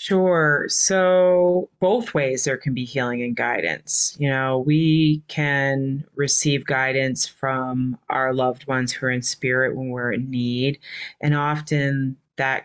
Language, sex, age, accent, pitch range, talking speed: English, female, 30-49, American, 130-150 Hz, 145 wpm